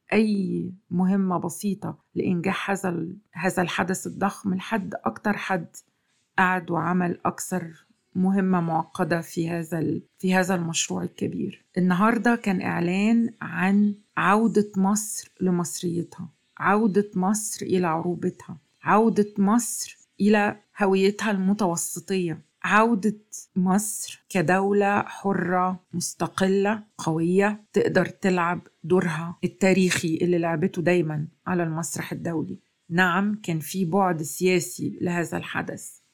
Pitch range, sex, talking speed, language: 175-200 Hz, female, 100 wpm, Arabic